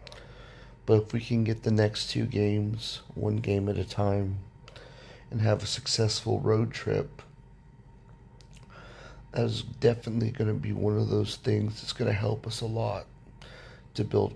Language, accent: English, American